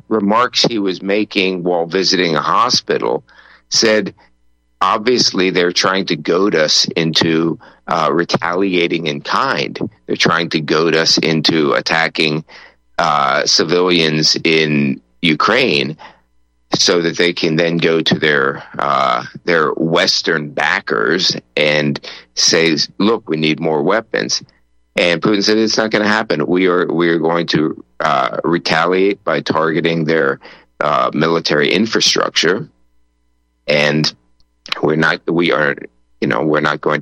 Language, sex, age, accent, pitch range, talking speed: English, male, 50-69, American, 70-90 Hz, 130 wpm